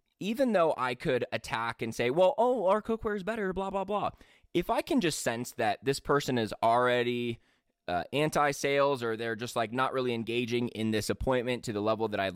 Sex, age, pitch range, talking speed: male, 20-39, 115-150 Hz, 210 wpm